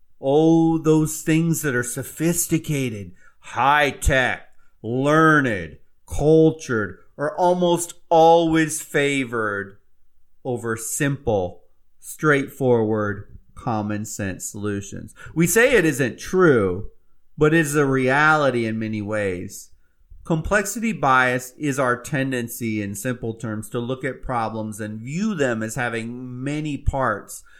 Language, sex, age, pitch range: English, male, 30-49, 115-155 Hz